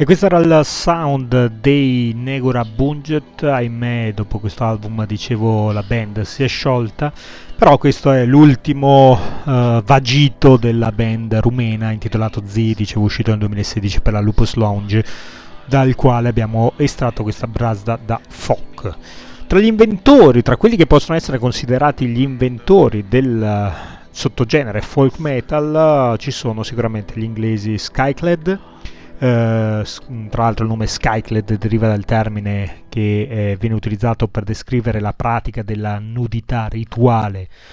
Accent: native